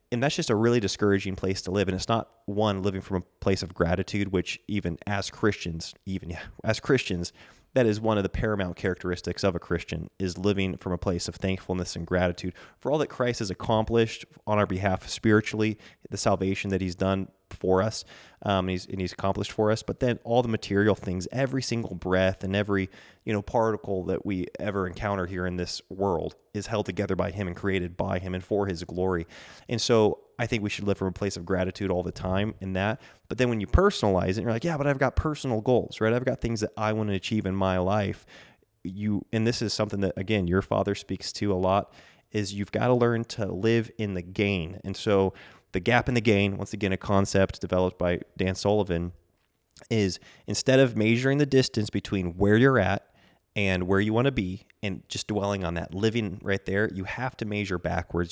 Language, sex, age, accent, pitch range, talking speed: English, male, 20-39, American, 95-110 Hz, 220 wpm